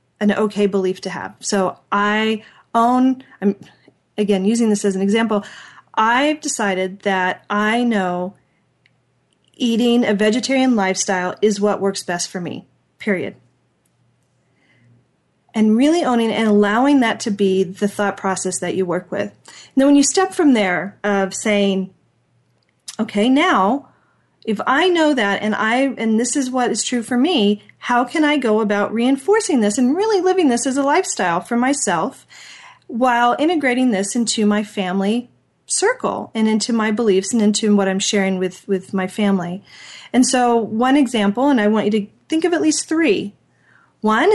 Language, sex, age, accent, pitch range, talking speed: English, female, 40-59, American, 195-255 Hz, 165 wpm